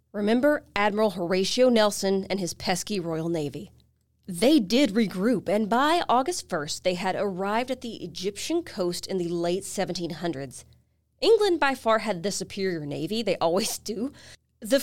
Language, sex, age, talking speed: English, female, 30-49, 155 wpm